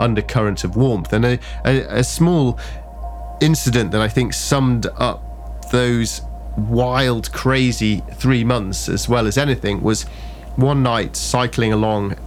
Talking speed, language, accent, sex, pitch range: 130 wpm, English, British, male, 100-125 Hz